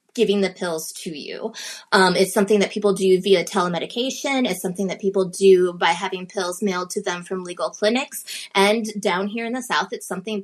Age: 20-39